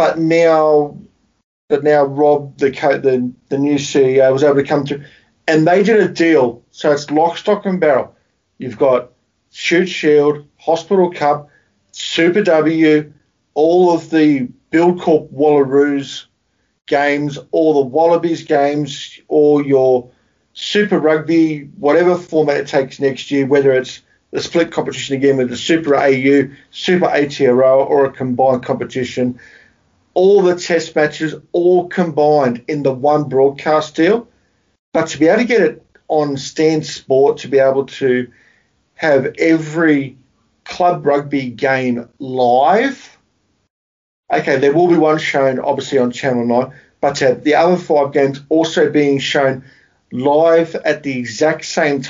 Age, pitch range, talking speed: 40-59, 135-160 Hz, 145 wpm